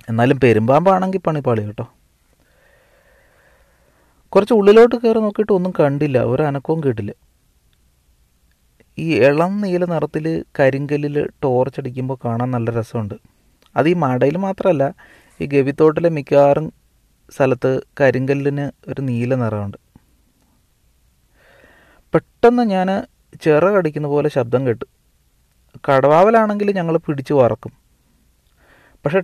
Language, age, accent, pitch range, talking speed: Malayalam, 30-49, native, 120-165 Hz, 90 wpm